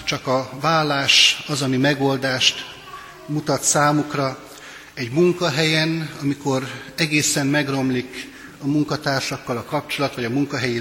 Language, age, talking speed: Hungarian, 60-79, 110 wpm